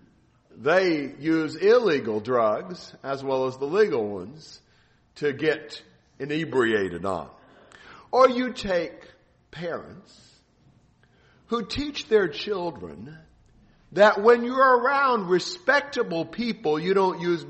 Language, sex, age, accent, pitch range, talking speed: English, male, 50-69, American, 160-250 Hz, 105 wpm